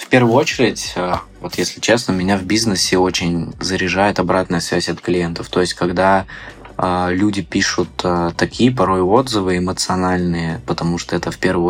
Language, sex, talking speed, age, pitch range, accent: Russian, male, 160 wpm, 20-39, 85-95 Hz, native